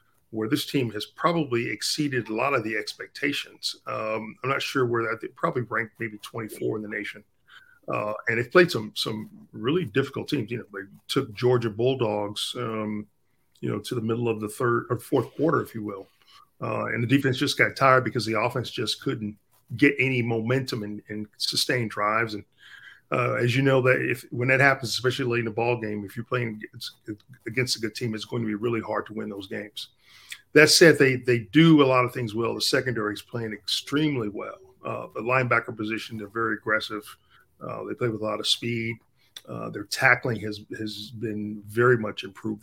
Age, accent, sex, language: 40-59, American, male, English